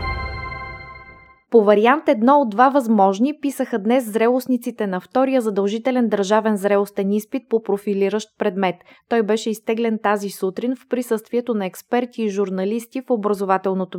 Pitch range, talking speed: 190-245 Hz, 135 wpm